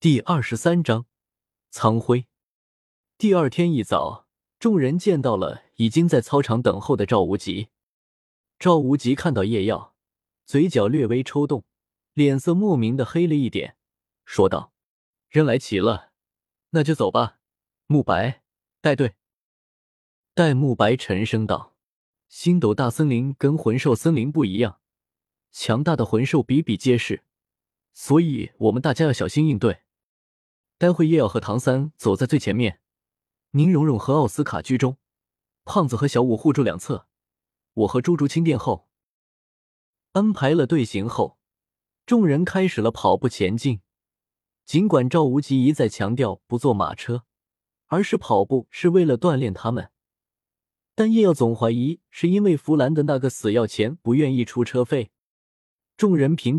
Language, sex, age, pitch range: Chinese, male, 20-39, 115-155 Hz